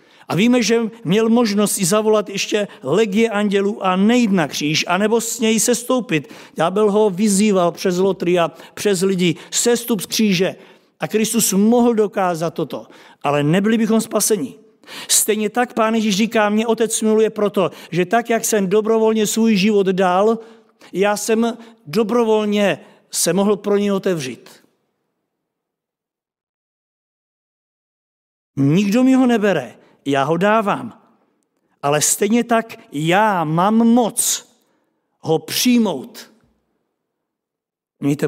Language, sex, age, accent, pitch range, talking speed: Czech, male, 50-69, native, 170-225 Hz, 125 wpm